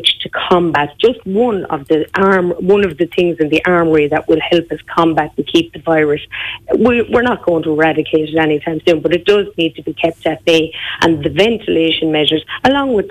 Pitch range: 155-185 Hz